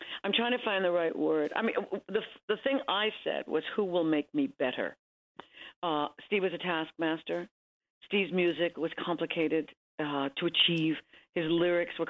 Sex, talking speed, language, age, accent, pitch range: female, 175 wpm, English, 50-69, American, 155-195 Hz